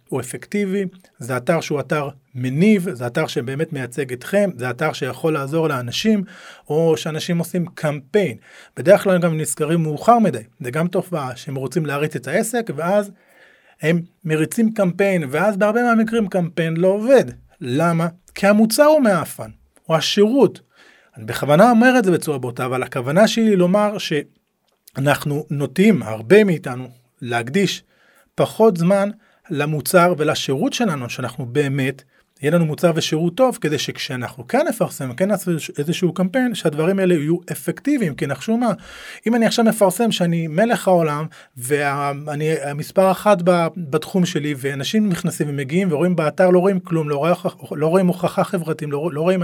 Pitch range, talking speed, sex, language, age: 150-195 Hz, 155 wpm, male, Hebrew, 40-59